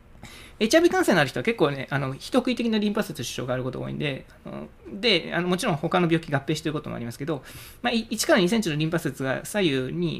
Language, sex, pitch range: Japanese, male, 130-175 Hz